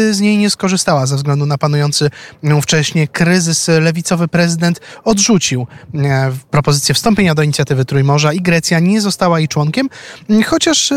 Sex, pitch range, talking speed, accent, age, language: male, 150-190 Hz, 135 wpm, native, 20-39, Polish